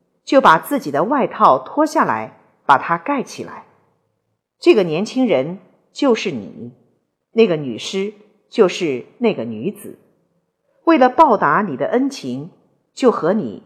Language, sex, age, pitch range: Chinese, female, 50-69, 175-280 Hz